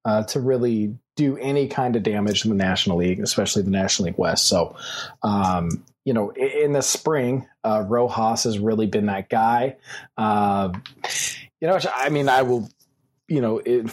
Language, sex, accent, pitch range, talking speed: English, male, American, 105-130 Hz, 175 wpm